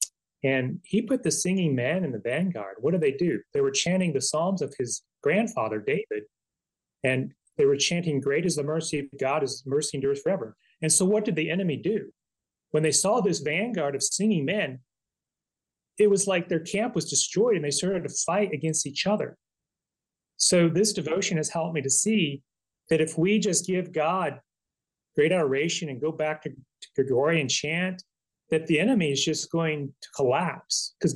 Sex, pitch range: male, 150-205 Hz